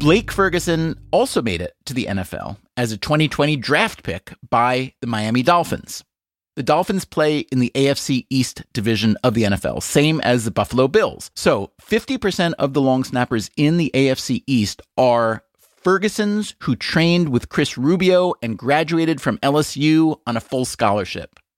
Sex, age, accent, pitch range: male, 30-49, American, 110-160 Hz